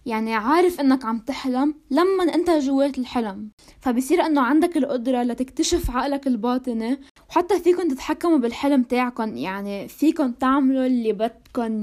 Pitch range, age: 230-280 Hz, 20-39